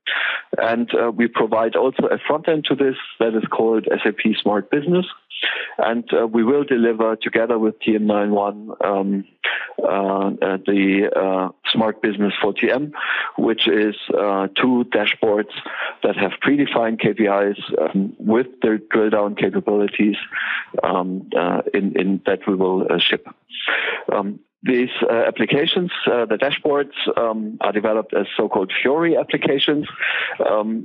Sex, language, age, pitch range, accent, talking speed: male, English, 50-69, 105-130 Hz, German, 135 wpm